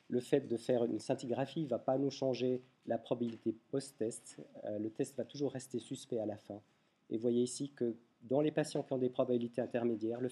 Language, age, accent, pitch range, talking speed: French, 40-59, French, 115-135 Hz, 215 wpm